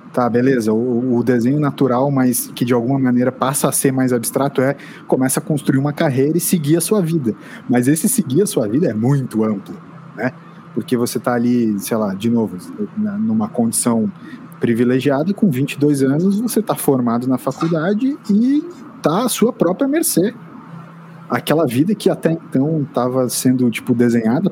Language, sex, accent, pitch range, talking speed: Portuguese, male, Brazilian, 120-175 Hz, 175 wpm